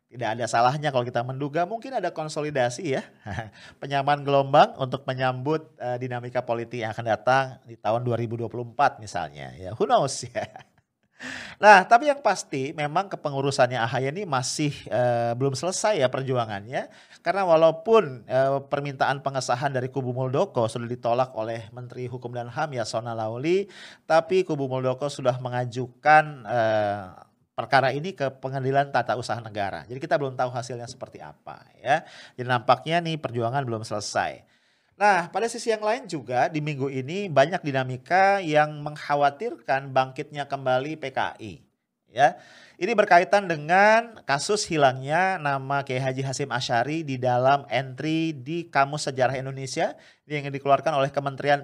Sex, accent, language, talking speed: male, Indonesian, English, 145 wpm